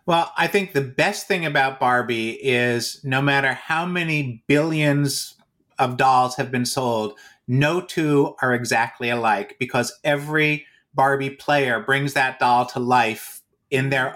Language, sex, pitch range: English, male, 130-150 Hz